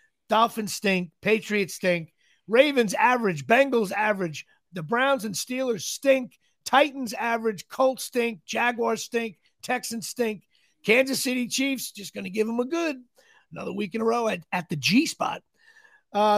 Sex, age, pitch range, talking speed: male, 50-69, 200-260 Hz, 150 wpm